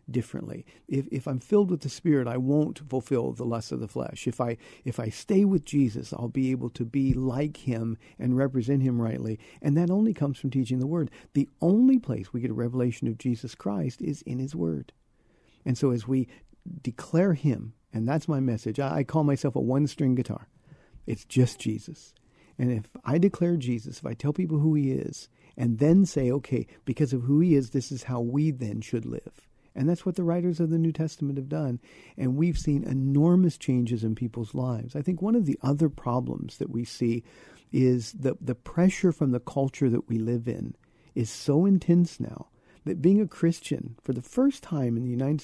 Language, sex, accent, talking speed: English, male, American, 210 wpm